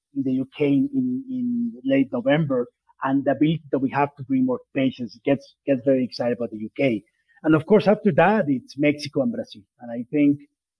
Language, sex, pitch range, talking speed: English, male, 135-185 Hz, 205 wpm